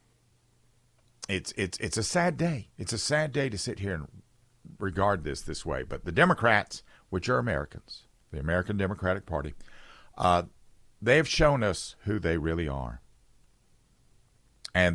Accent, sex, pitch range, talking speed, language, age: American, male, 80-115 Hz, 155 wpm, English, 50-69